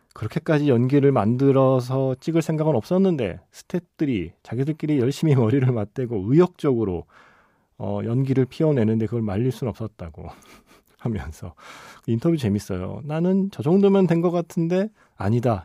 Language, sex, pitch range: Korean, male, 100-150 Hz